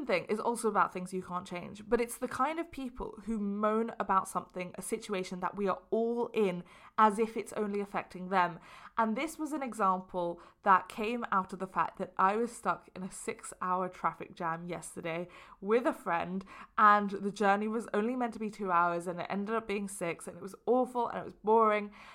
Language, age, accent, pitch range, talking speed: English, 20-39, British, 195-265 Hz, 215 wpm